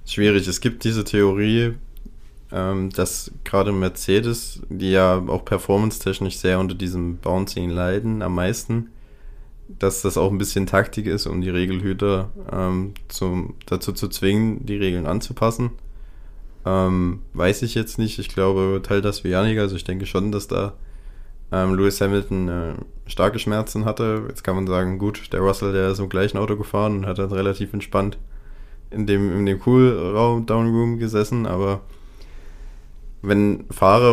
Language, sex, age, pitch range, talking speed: German, male, 20-39, 95-105 Hz, 155 wpm